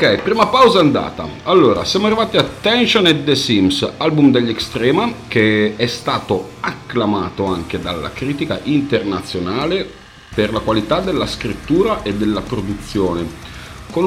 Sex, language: male, Italian